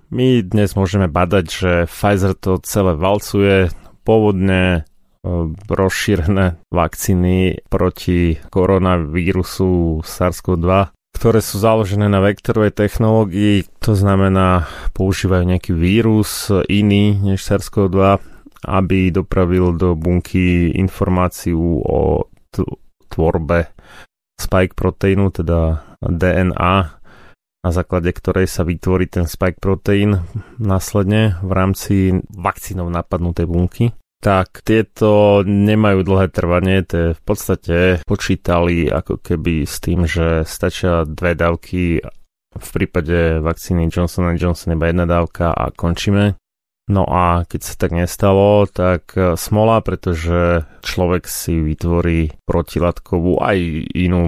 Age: 30-49